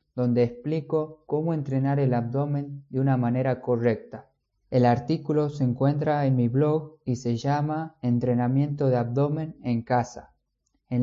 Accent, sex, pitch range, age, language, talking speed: Argentinian, male, 120-145 Hz, 20-39, Spanish, 140 wpm